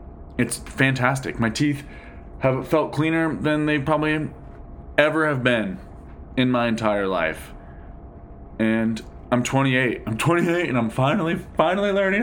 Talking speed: 130 wpm